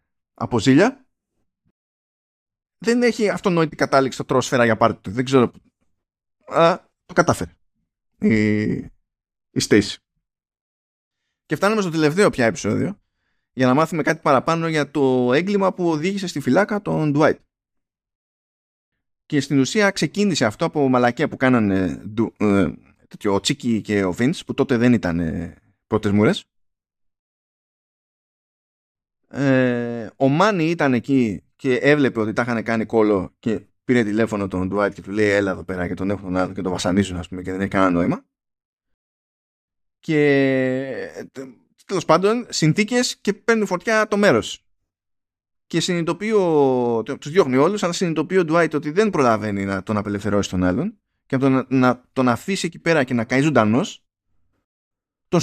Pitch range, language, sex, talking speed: 100-165 Hz, Greek, male, 140 wpm